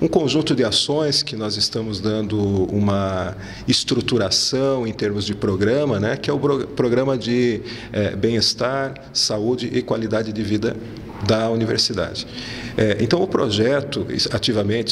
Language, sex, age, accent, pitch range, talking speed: Portuguese, male, 40-59, Brazilian, 110-130 Hz, 135 wpm